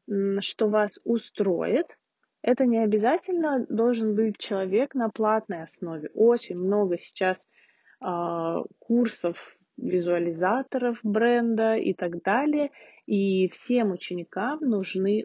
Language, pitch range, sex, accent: Russian, 195-245 Hz, female, native